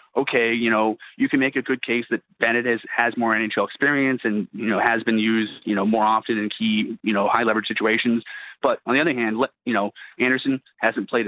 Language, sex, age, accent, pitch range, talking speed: English, male, 30-49, American, 110-125 Hz, 230 wpm